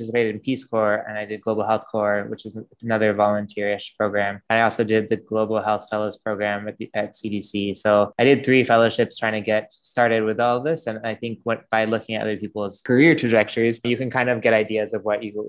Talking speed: 235 wpm